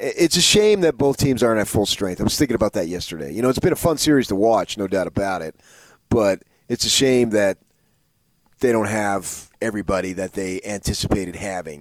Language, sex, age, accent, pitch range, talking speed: English, male, 30-49, American, 90-110 Hz, 215 wpm